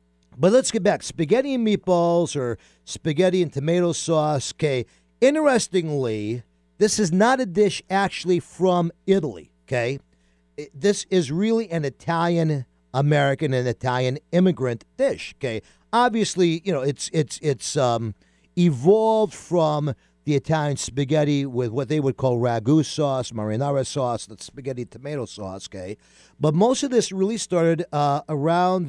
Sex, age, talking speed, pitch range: male, 50-69, 140 wpm, 120-175 Hz